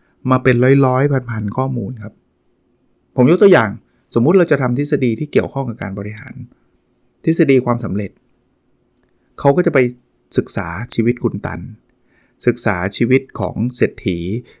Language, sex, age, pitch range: Thai, male, 20-39, 115-140 Hz